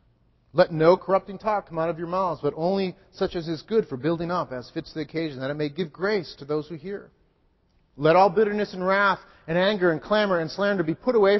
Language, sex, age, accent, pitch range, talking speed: English, male, 40-59, American, 155-205 Hz, 235 wpm